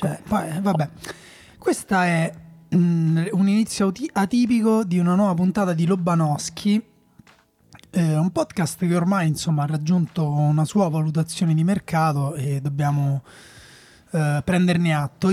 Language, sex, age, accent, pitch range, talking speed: Italian, male, 30-49, native, 155-190 Hz, 120 wpm